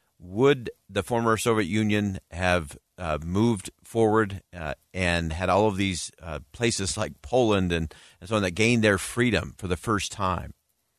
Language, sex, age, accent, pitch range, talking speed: English, male, 50-69, American, 90-115 Hz, 170 wpm